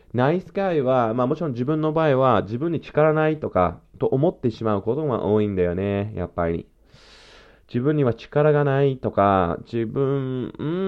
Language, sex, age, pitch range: Japanese, male, 20-39, 100-160 Hz